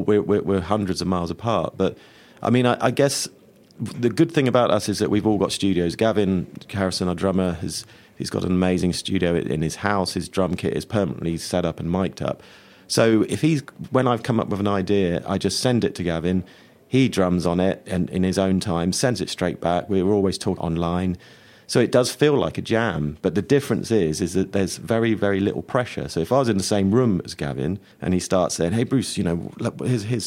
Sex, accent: male, British